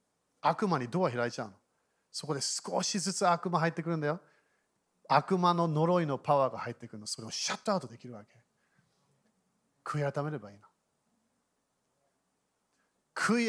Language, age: Japanese, 40-59